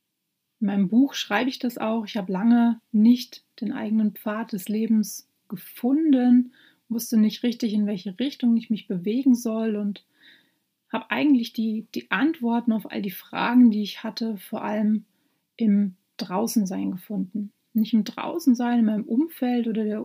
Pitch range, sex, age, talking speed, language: 210-245 Hz, female, 30-49, 160 wpm, German